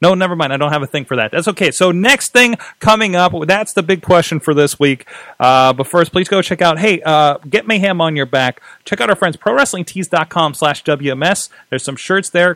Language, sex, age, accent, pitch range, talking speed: English, male, 30-49, American, 135-170 Hz, 235 wpm